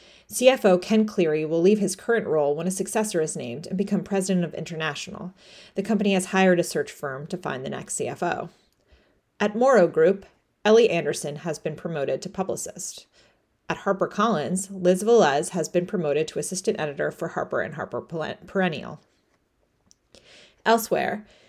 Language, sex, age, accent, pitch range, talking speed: English, female, 30-49, American, 160-200 Hz, 155 wpm